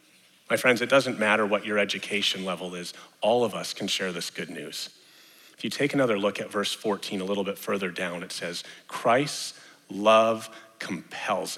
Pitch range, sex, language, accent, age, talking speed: 105-140 Hz, male, English, American, 40-59, 185 wpm